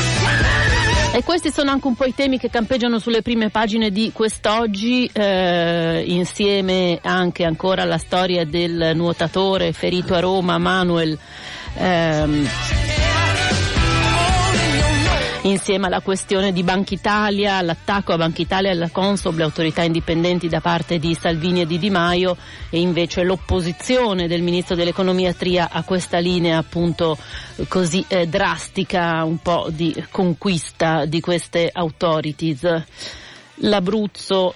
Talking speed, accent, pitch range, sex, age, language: 125 wpm, native, 170-195 Hz, female, 40-59, Italian